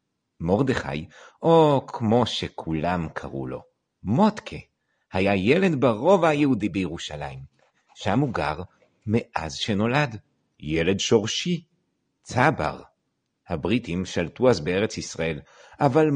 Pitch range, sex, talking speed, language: 85-145 Hz, male, 95 wpm, Hebrew